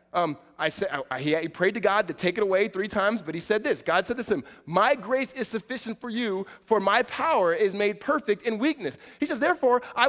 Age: 20-39